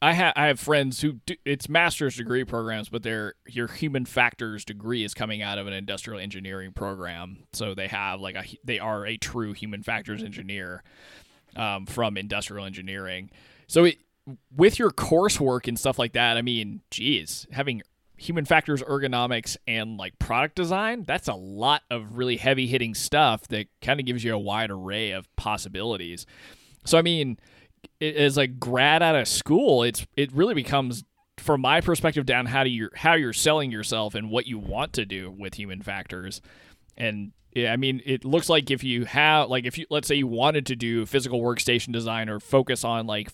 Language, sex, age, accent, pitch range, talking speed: English, male, 20-39, American, 105-140 Hz, 190 wpm